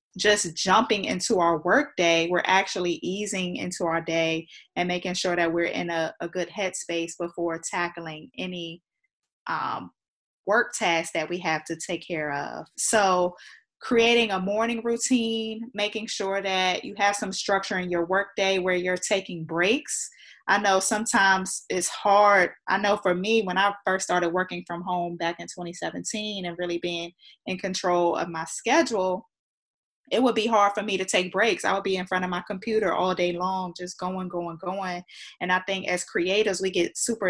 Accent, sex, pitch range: American, female, 175-205 Hz